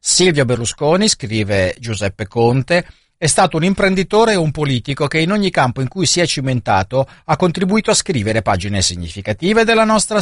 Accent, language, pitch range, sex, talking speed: native, Italian, 115-155 Hz, male, 170 wpm